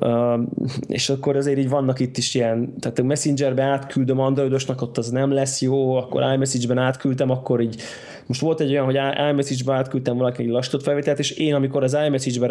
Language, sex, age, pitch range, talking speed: Hungarian, male, 20-39, 120-140 Hz, 185 wpm